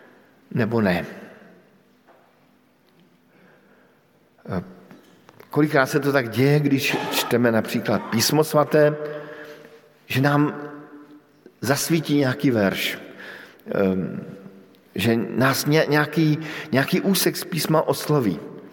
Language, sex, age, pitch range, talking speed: Slovak, male, 50-69, 120-155 Hz, 80 wpm